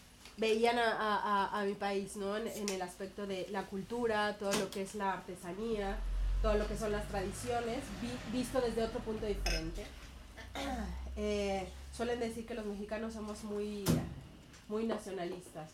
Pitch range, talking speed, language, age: 200-230 Hz, 155 wpm, Spanish, 30-49